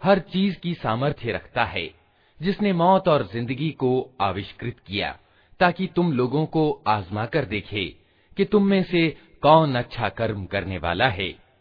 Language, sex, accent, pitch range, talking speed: Hindi, male, native, 105-165 Hz, 155 wpm